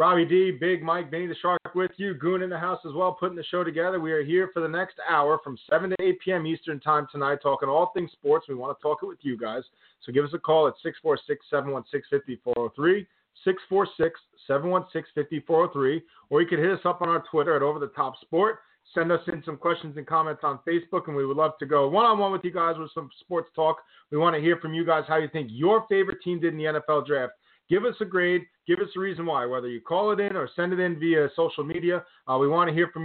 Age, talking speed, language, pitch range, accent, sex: 40-59, 250 wpm, English, 145-180 Hz, American, male